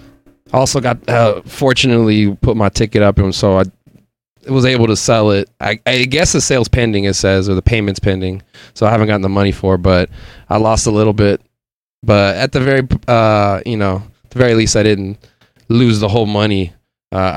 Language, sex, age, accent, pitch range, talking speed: English, male, 20-39, American, 95-115 Hz, 205 wpm